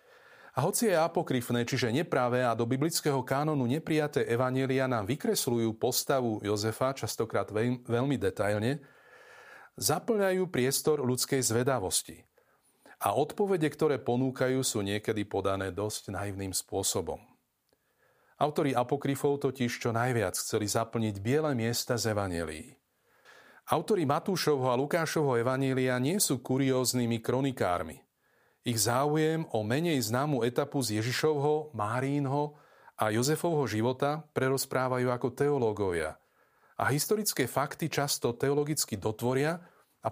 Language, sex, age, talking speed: Slovak, male, 40-59, 110 wpm